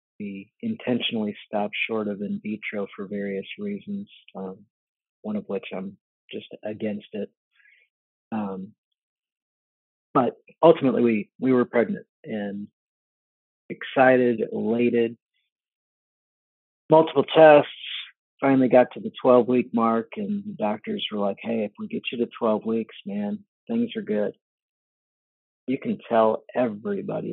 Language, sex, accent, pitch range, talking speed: English, male, American, 105-150 Hz, 125 wpm